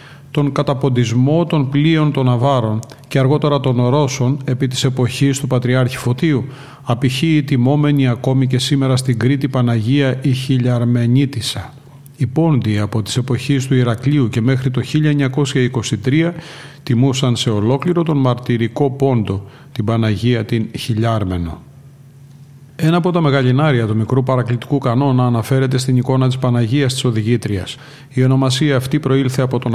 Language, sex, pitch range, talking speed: Greek, male, 120-140 Hz, 140 wpm